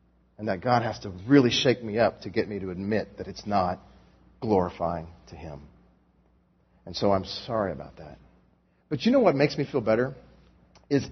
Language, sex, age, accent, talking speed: English, male, 40-59, American, 190 wpm